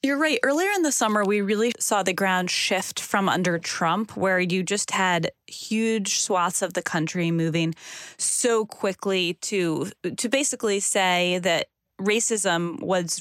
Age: 20-39